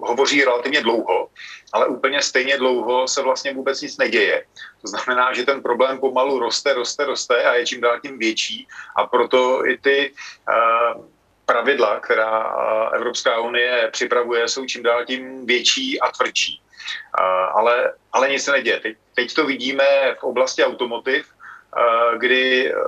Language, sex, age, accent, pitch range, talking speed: Czech, male, 40-59, native, 120-140 Hz, 155 wpm